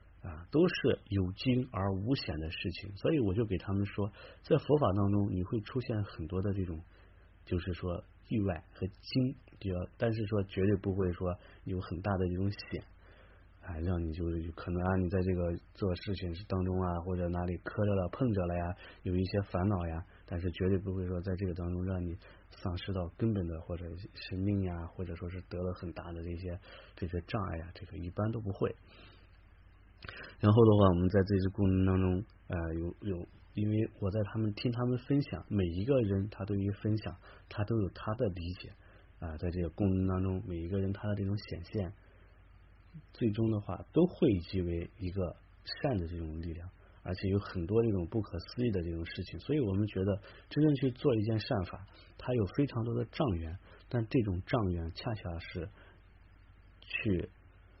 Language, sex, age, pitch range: English, male, 30-49, 90-105 Hz